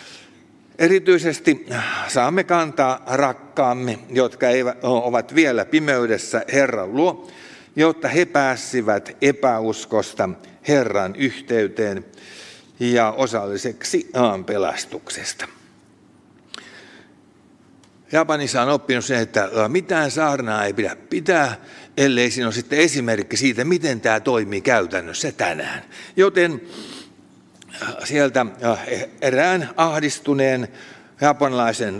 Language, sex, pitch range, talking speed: Finnish, male, 120-160 Hz, 85 wpm